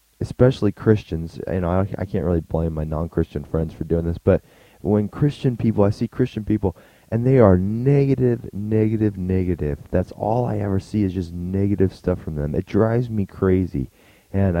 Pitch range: 85-110 Hz